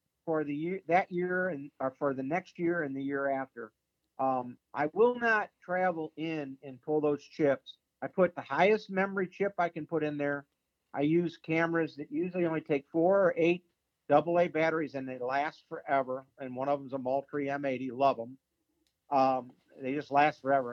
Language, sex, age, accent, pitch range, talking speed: English, male, 50-69, American, 135-170 Hz, 195 wpm